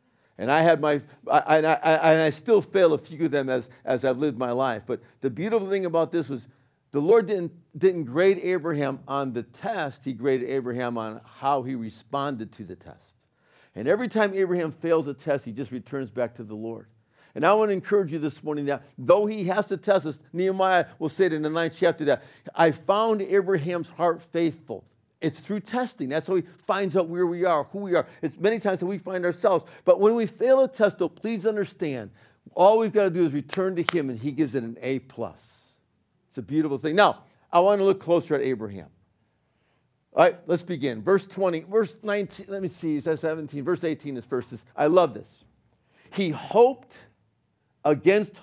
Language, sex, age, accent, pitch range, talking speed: English, male, 50-69, American, 135-190 Hz, 210 wpm